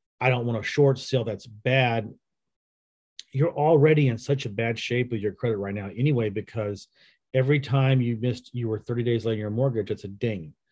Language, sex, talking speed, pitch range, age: English, male, 205 wpm, 110-135 Hz, 40-59